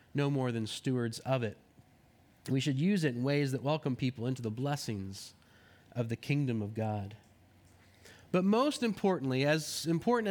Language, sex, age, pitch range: English, male, 20-39, 115-185 Hz